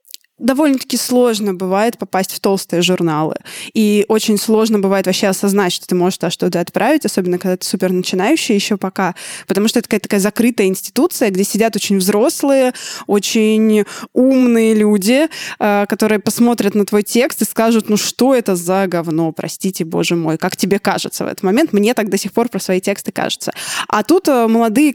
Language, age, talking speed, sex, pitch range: Russian, 20-39, 175 wpm, female, 190-230 Hz